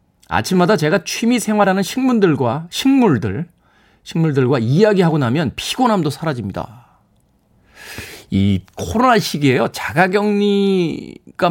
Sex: male